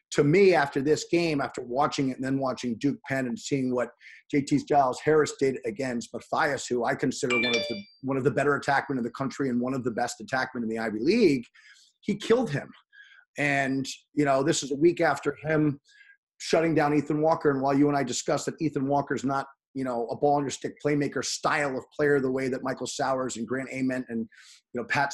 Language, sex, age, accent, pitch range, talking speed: English, male, 30-49, American, 130-150 Hz, 220 wpm